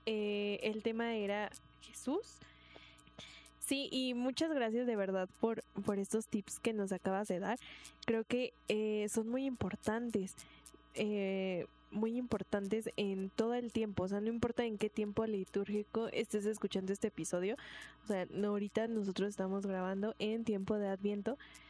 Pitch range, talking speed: 195-230 Hz, 150 wpm